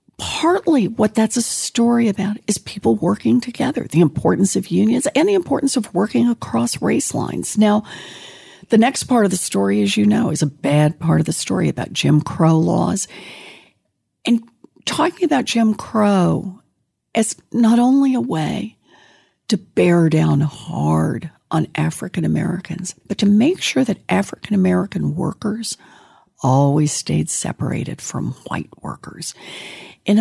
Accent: American